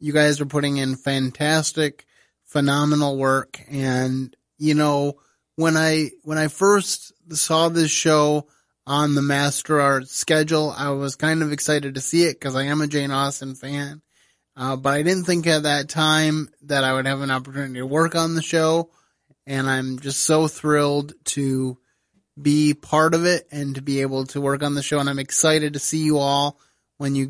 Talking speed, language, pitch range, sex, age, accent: 190 wpm, English, 135-155 Hz, male, 30-49, American